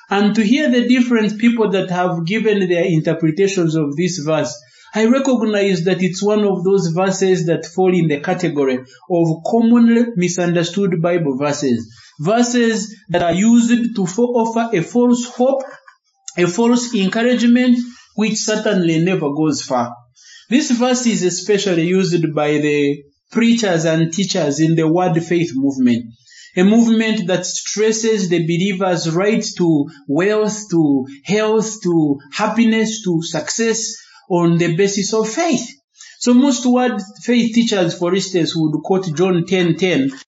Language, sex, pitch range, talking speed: English, male, 170-225 Hz, 140 wpm